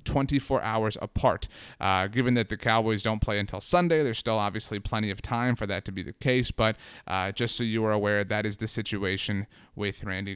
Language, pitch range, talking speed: English, 110-135 Hz, 215 wpm